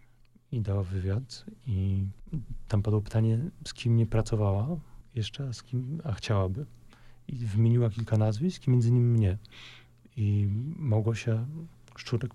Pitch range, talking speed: 100-120 Hz, 135 wpm